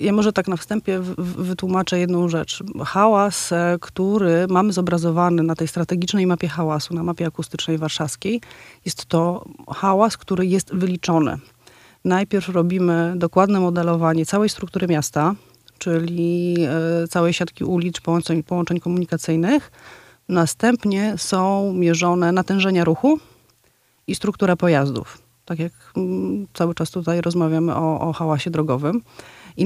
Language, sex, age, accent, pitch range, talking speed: Polish, female, 30-49, native, 165-195 Hz, 120 wpm